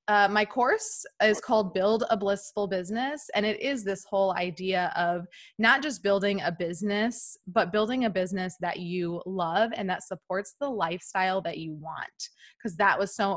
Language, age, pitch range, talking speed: English, 20-39, 185-220 Hz, 180 wpm